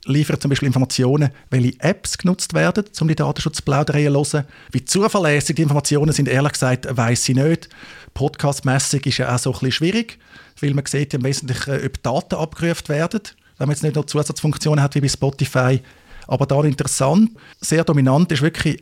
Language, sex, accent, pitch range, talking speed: German, male, Austrian, 130-160 Hz, 180 wpm